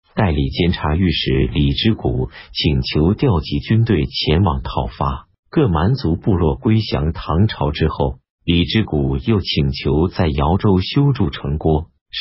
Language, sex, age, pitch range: Chinese, male, 50-69, 75-100 Hz